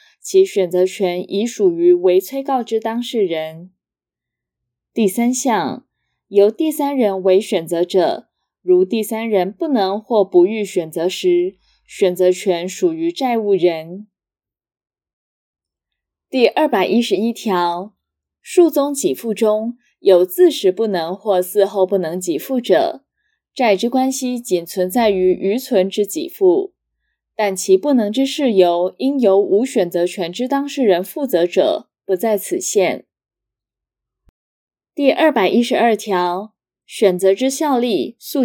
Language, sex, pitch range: Chinese, female, 185-265 Hz